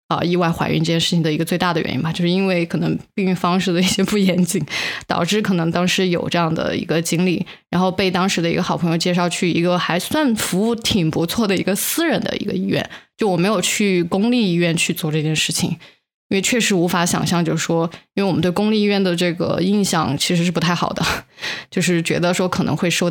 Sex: female